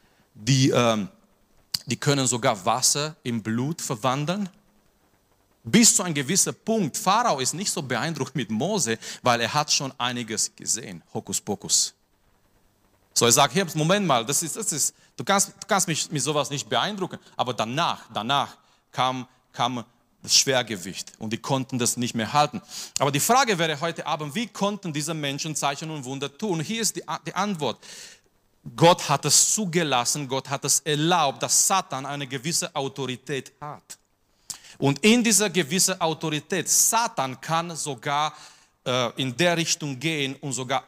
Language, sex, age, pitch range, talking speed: German, male, 40-59, 125-165 Hz, 160 wpm